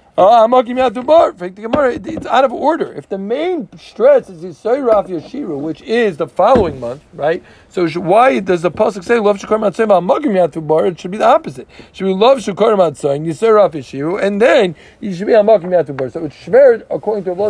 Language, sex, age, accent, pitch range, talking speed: English, male, 50-69, American, 155-210 Hz, 215 wpm